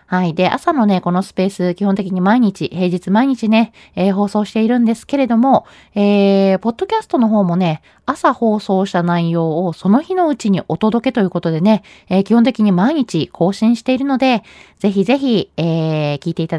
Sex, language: female, Japanese